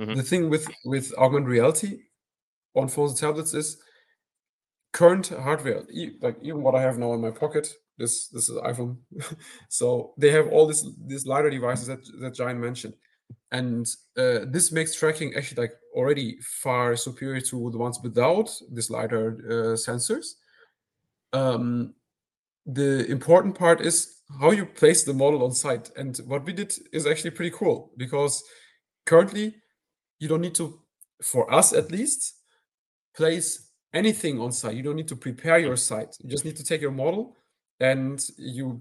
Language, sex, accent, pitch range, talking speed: English, male, German, 125-160 Hz, 165 wpm